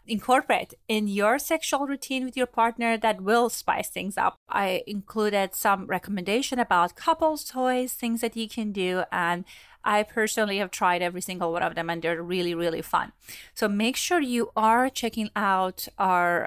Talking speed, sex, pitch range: 175 wpm, female, 200-260 Hz